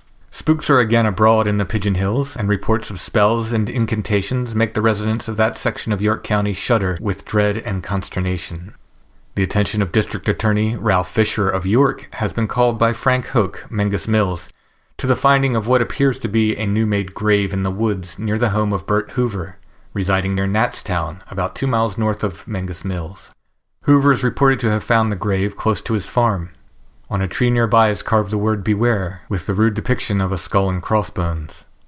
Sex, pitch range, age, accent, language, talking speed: male, 95-110 Hz, 30-49, American, English, 200 wpm